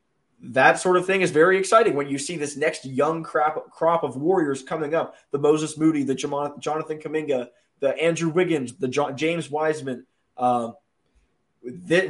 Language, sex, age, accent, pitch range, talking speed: English, male, 20-39, American, 135-160 Hz, 165 wpm